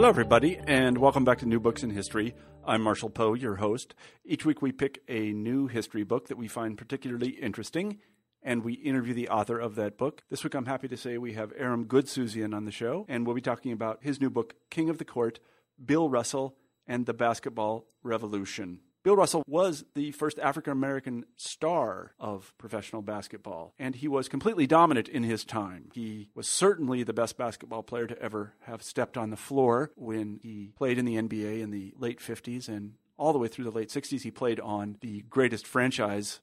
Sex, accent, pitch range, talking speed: male, American, 110-135 Hz, 205 wpm